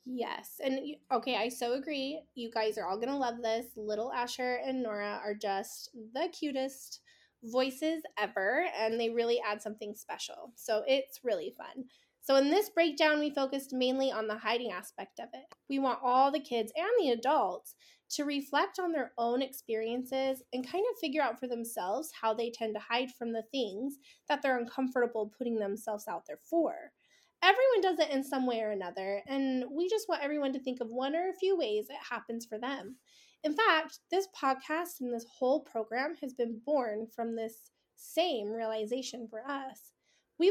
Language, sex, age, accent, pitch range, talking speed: English, female, 20-39, American, 230-300 Hz, 190 wpm